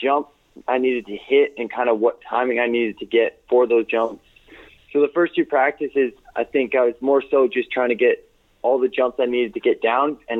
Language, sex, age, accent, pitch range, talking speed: English, male, 20-39, American, 115-165 Hz, 235 wpm